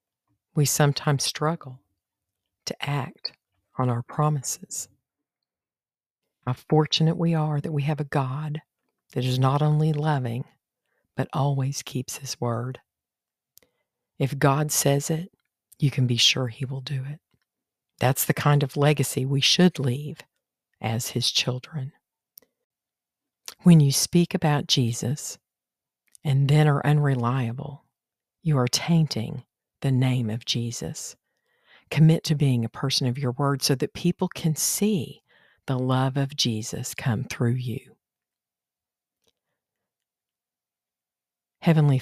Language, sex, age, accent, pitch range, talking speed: English, female, 50-69, American, 125-150 Hz, 125 wpm